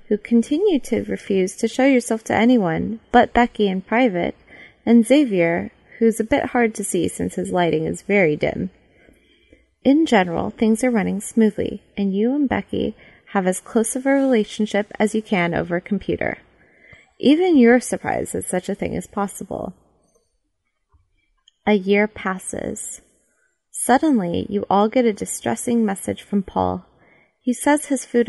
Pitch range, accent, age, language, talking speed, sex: 190-235 Hz, American, 20-39, English, 155 wpm, female